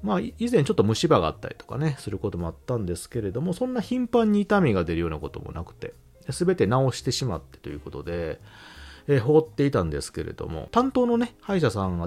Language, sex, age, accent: Japanese, male, 40-59, native